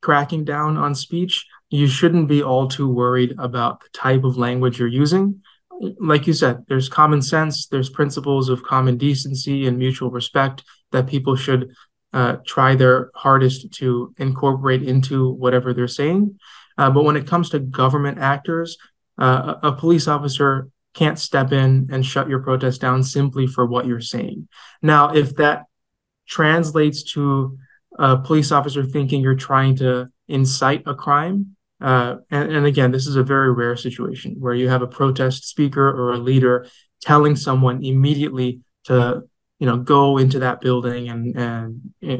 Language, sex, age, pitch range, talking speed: Arabic, male, 20-39, 125-145 Hz, 165 wpm